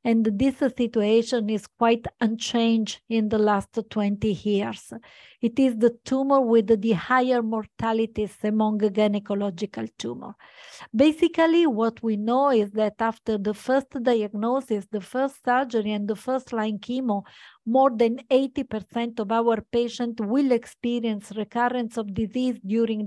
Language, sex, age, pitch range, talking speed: English, female, 50-69, 215-245 Hz, 135 wpm